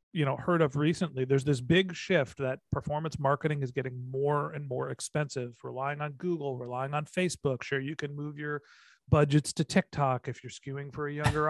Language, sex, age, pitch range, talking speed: English, male, 40-59, 135-160 Hz, 200 wpm